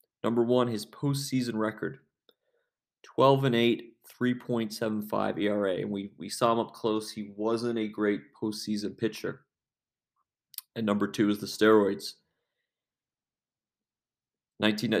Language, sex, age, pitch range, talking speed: English, male, 30-49, 105-120 Hz, 120 wpm